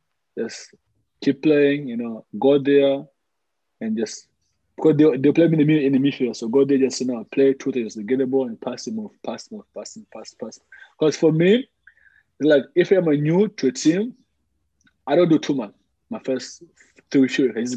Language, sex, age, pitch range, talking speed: English, male, 20-39, 130-165 Hz, 230 wpm